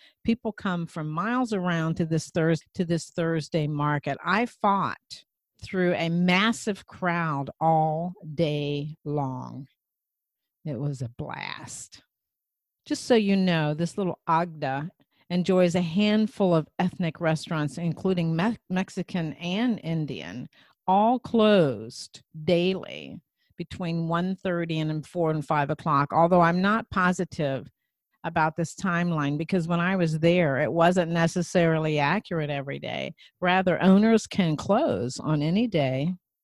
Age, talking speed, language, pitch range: 50-69, 125 wpm, English, 155-185 Hz